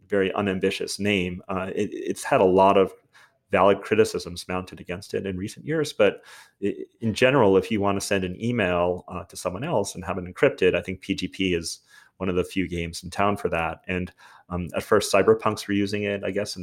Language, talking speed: English, 215 wpm